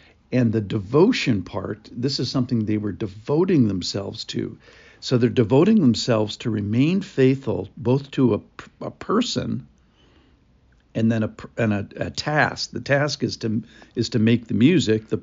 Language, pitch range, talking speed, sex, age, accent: English, 110-125 Hz, 160 wpm, male, 60-79, American